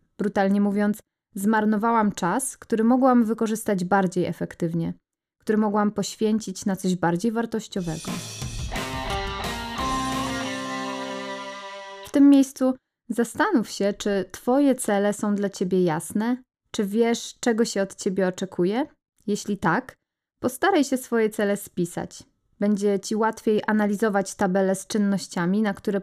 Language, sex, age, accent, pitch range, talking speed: Polish, female, 20-39, native, 185-230 Hz, 120 wpm